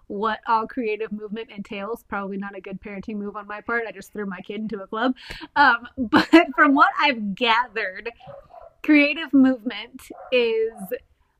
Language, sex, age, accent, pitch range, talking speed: English, female, 20-39, American, 225-305 Hz, 165 wpm